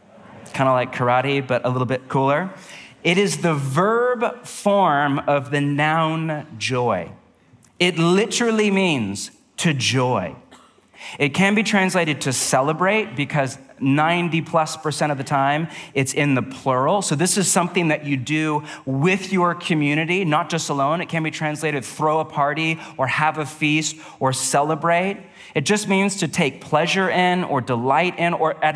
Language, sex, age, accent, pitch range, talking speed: English, male, 30-49, American, 135-175 Hz, 165 wpm